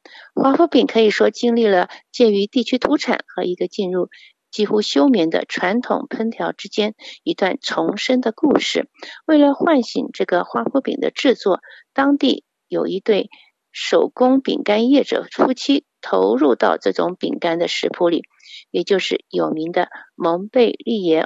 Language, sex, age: Chinese, female, 50-69